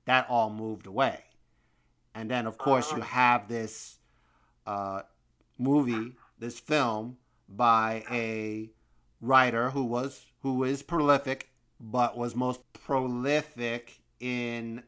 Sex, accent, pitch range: male, American, 105-130 Hz